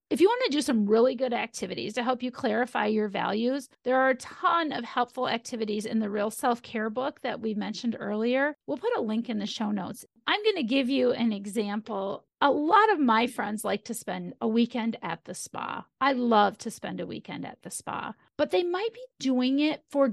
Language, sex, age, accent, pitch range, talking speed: English, female, 40-59, American, 220-270 Hz, 225 wpm